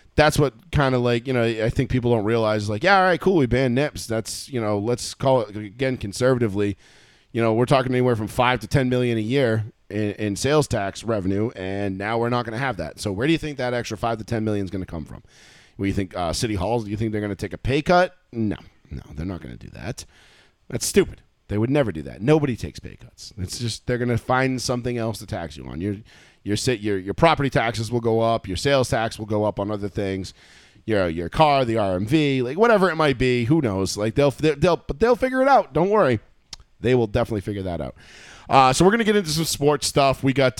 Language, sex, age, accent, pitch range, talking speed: English, male, 30-49, American, 105-140 Hz, 260 wpm